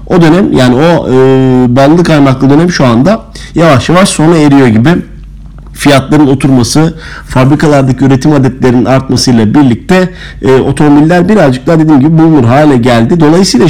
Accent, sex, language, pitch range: native, male, Turkish, 120-150 Hz